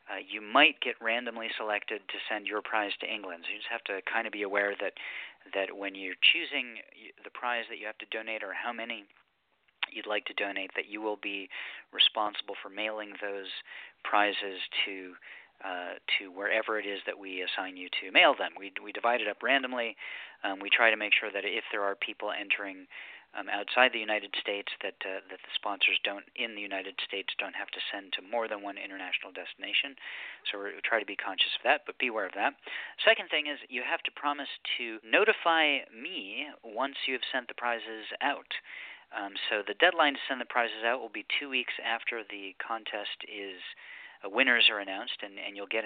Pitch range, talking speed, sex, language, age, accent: 100-130 Hz, 210 wpm, male, English, 40-59, American